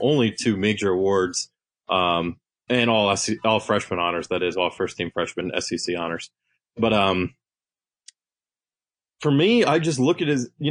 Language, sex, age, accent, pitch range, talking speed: English, male, 30-49, American, 105-125 Hz, 155 wpm